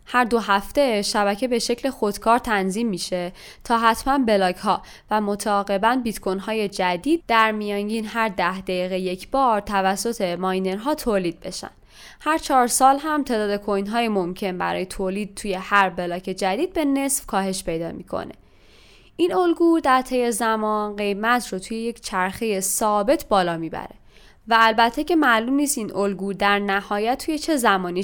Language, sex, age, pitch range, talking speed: Persian, female, 10-29, 190-235 Hz, 160 wpm